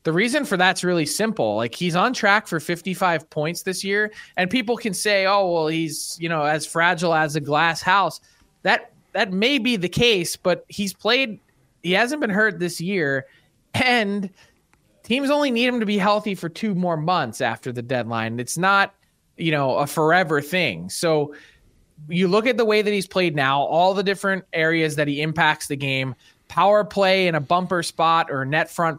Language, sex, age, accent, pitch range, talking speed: English, male, 20-39, American, 150-190 Hz, 195 wpm